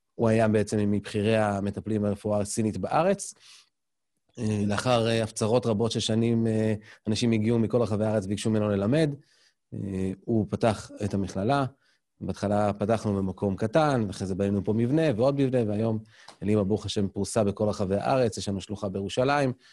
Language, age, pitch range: Hebrew, 30-49, 100-120 Hz